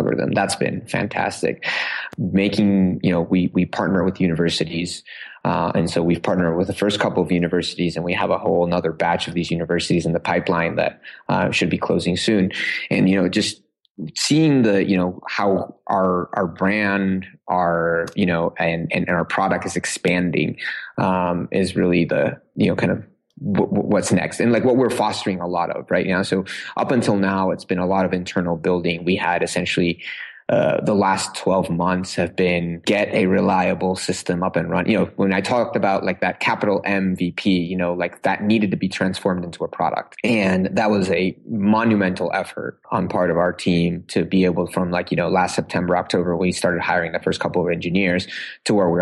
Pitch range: 85-95 Hz